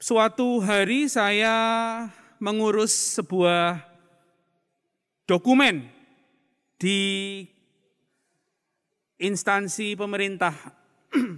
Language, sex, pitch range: Indonesian, male, 175-225 Hz